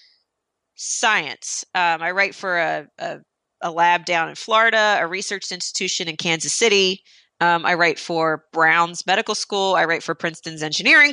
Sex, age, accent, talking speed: female, 30-49, American, 160 wpm